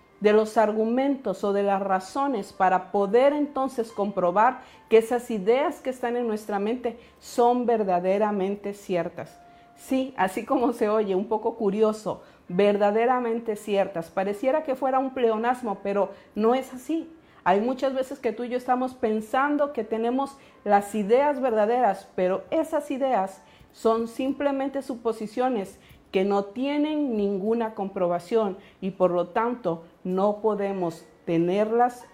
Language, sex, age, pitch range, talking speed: Spanish, female, 50-69, 200-265 Hz, 135 wpm